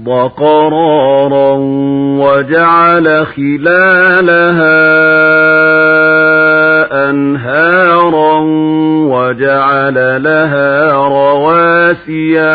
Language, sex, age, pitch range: Arabic, male, 50-69, 150-180 Hz